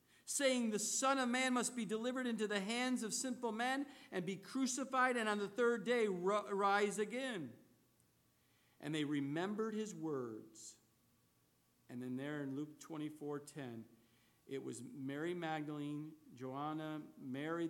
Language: English